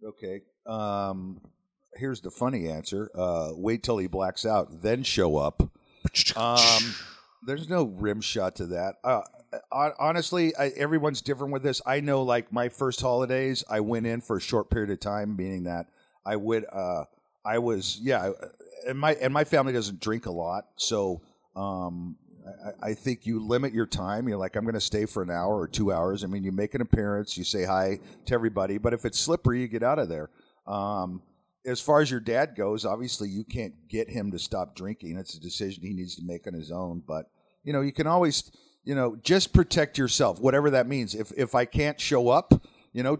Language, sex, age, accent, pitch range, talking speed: English, male, 50-69, American, 100-135 Hz, 205 wpm